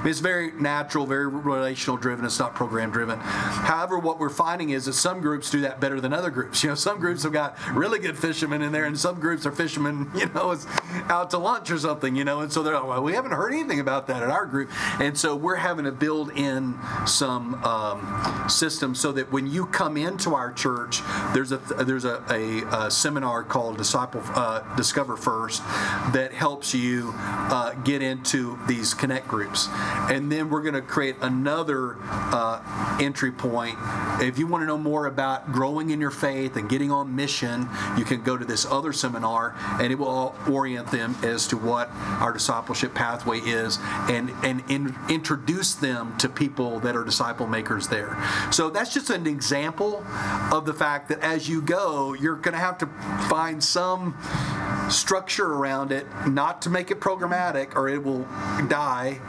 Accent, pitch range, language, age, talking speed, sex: American, 120-155 Hz, English, 40-59, 190 wpm, male